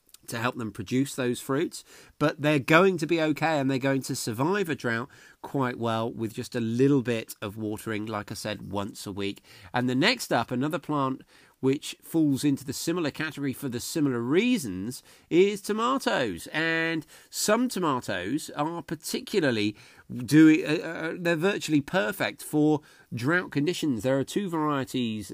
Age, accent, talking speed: 40-59, British, 170 wpm